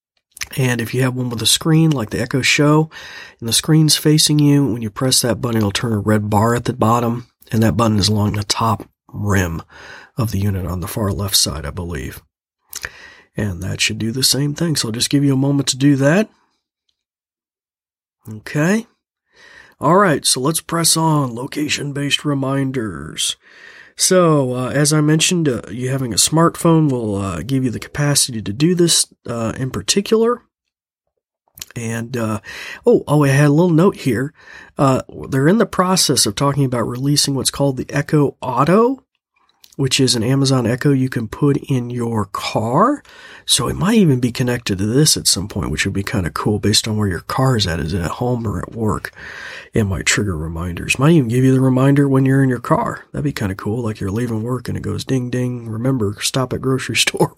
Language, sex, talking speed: English, male, 205 wpm